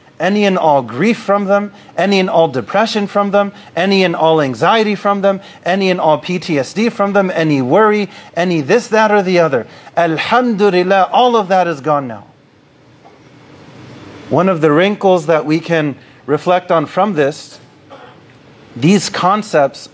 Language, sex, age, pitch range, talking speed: English, male, 30-49, 150-200 Hz, 155 wpm